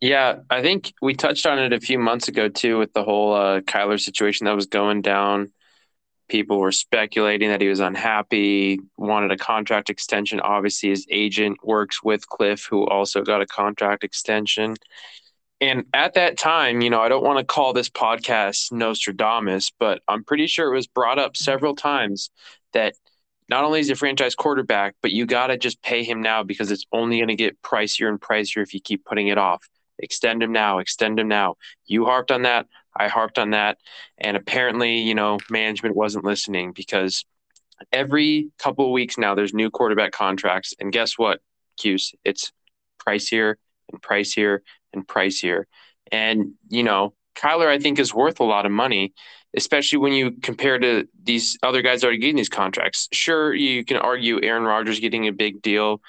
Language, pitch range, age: English, 100-125 Hz, 20-39